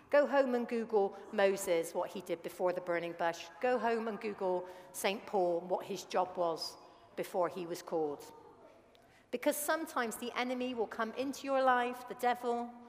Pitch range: 200-280 Hz